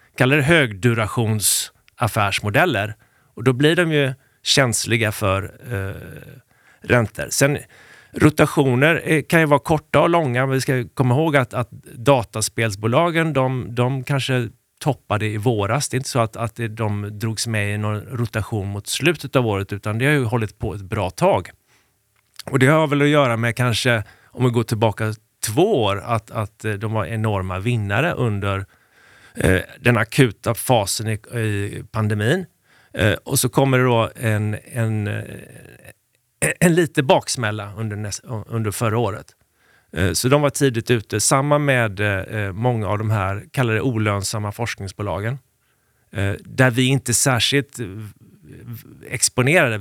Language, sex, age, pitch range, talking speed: Swedish, male, 30-49, 105-130 Hz, 145 wpm